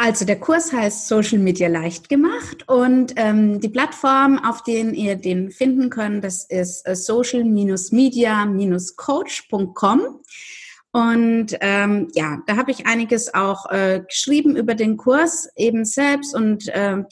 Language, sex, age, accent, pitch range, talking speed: German, female, 30-49, German, 195-240 Hz, 135 wpm